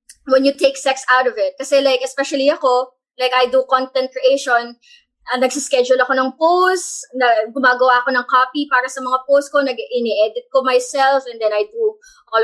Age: 20-39